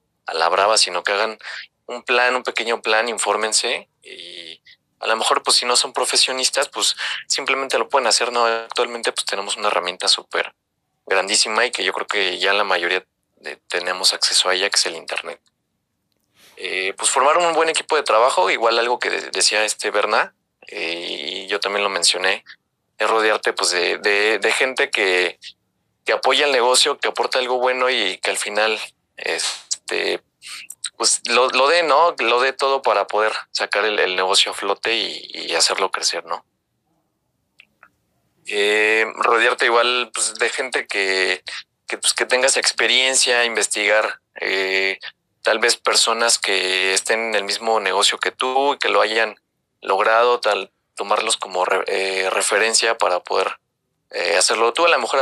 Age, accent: 30-49, Mexican